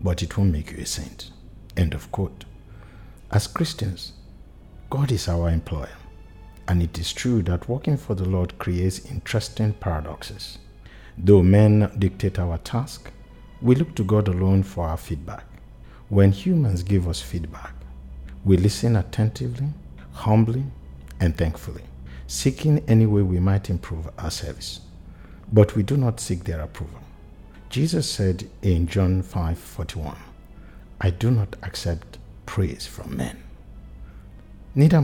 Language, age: English, 50-69